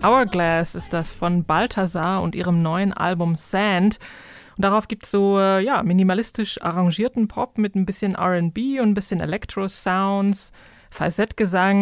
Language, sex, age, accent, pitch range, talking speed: German, female, 20-39, German, 180-220 Hz, 145 wpm